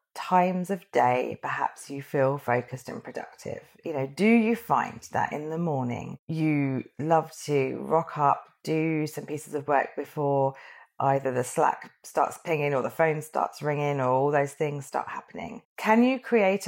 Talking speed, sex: 175 wpm, female